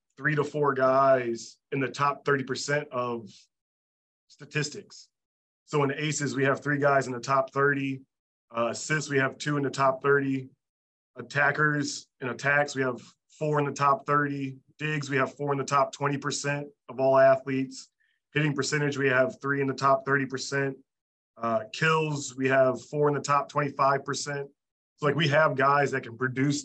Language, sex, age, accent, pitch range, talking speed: English, male, 30-49, American, 130-145 Hz, 175 wpm